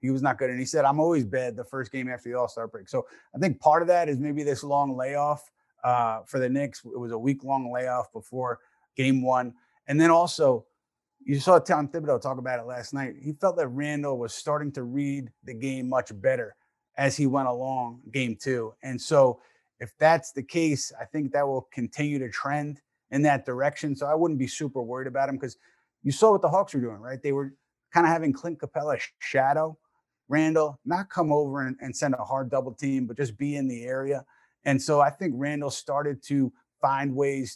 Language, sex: English, male